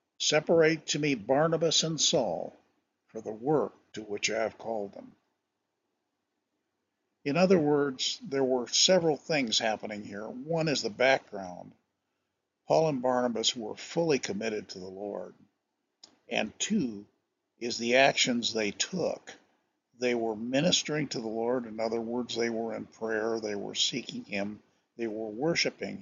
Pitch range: 110-135 Hz